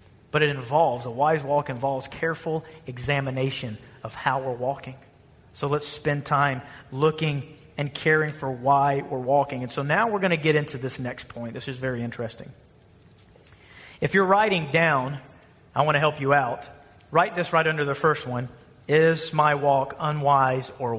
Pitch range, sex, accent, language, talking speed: 130-170 Hz, male, American, English, 175 wpm